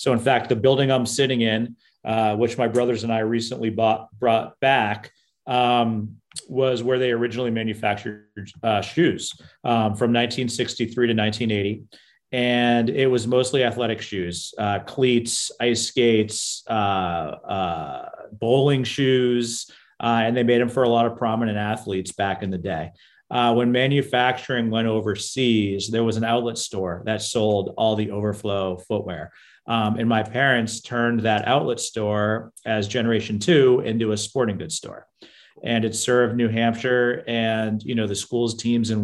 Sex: male